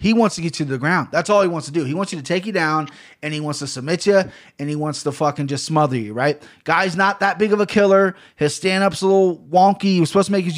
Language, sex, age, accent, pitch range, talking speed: English, male, 20-39, American, 145-180 Hz, 305 wpm